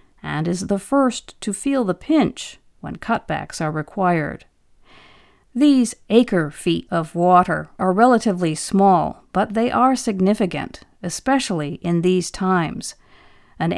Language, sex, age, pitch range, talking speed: English, female, 50-69, 170-225 Hz, 120 wpm